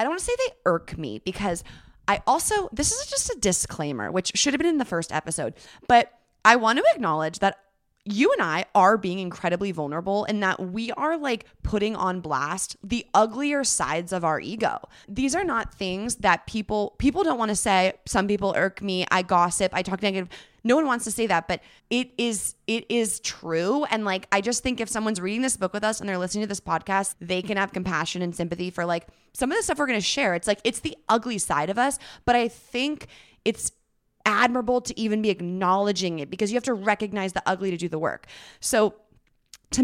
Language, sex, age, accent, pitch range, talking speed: English, female, 20-39, American, 185-240 Hz, 225 wpm